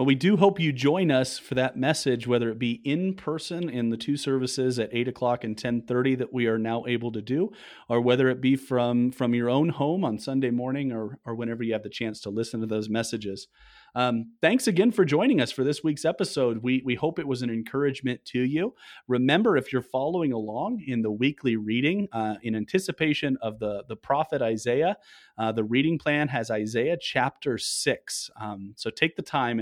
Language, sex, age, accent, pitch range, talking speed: English, male, 30-49, American, 115-140 Hz, 215 wpm